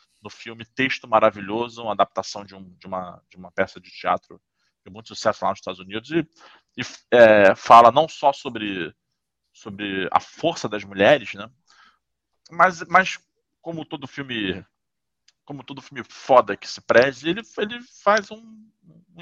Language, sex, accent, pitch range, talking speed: Portuguese, male, Brazilian, 95-120 Hz, 160 wpm